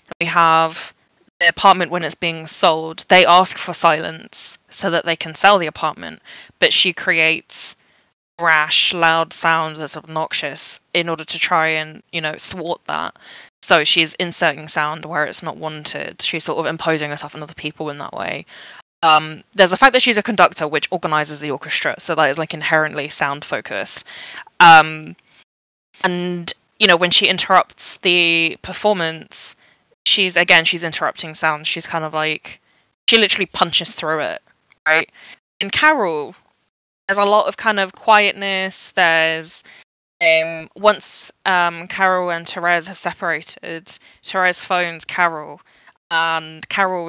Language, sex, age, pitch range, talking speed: English, female, 20-39, 155-180 Hz, 155 wpm